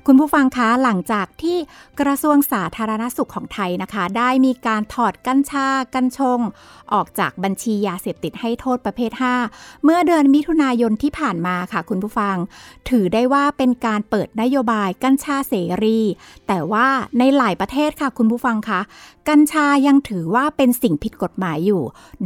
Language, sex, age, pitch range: Thai, female, 60-79, 210-280 Hz